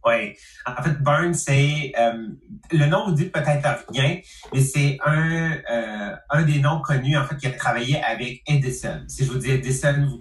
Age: 30-49